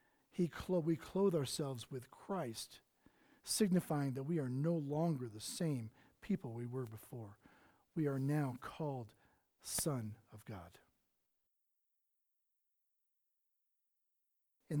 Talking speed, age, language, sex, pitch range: 110 wpm, 40-59, English, male, 155-215 Hz